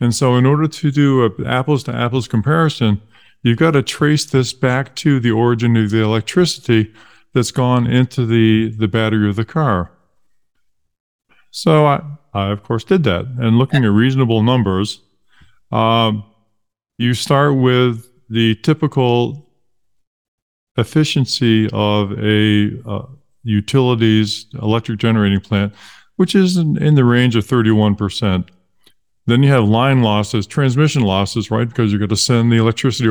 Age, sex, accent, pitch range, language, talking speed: 50-69, male, American, 105-125 Hz, English, 145 wpm